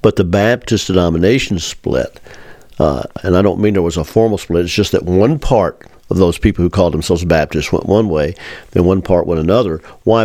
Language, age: English, 50-69